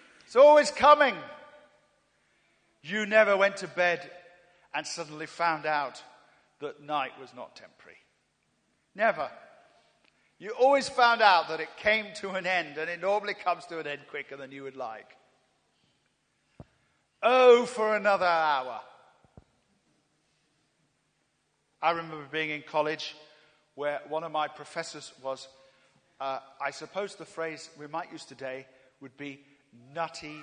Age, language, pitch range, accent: 50-69, English, 145-195 Hz, British